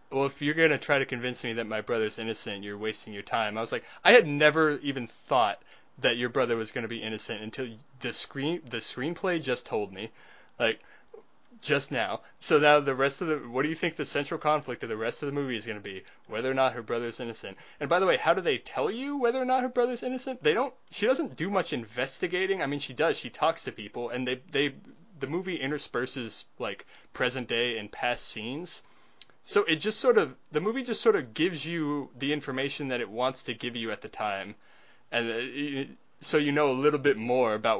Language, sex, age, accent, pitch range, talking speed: English, male, 20-39, American, 115-155 Hz, 235 wpm